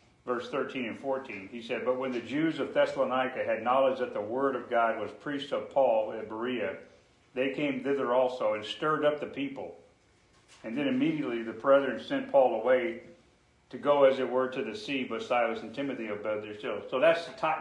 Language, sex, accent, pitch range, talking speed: English, male, American, 125-175 Hz, 210 wpm